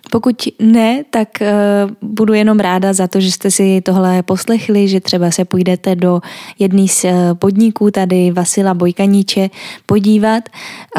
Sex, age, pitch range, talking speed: female, 10-29, 185-225 Hz, 135 wpm